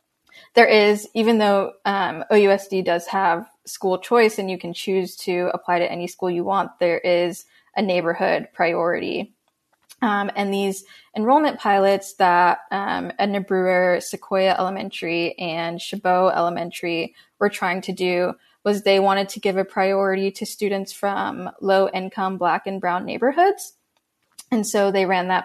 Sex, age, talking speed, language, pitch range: female, 10-29, 155 wpm, English, 180-210 Hz